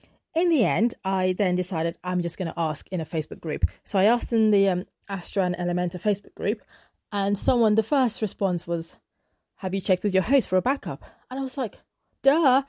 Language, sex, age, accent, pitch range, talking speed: English, female, 30-49, British, 175-225 Hz, 220 wpm